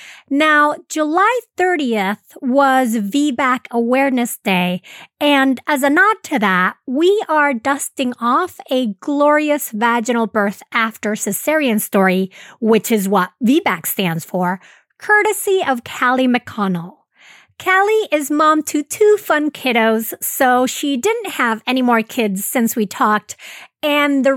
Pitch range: 240-315 Hz